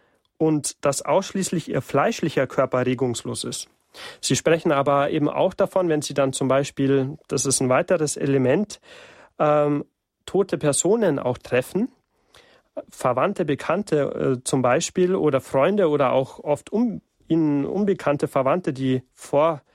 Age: 40-59